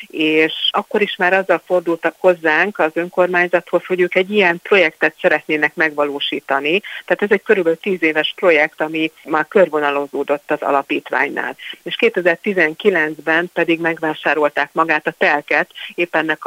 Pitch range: 155-185 Hz